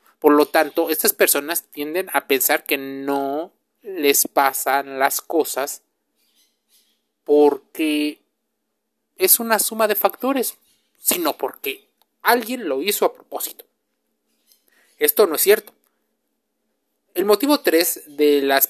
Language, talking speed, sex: Spanish, 115 wpm, male